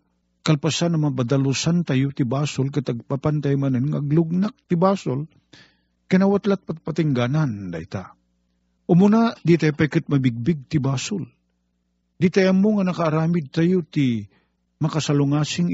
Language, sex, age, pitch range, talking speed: Filipino, male, 50-69, 110-175 Hz, 105 wpm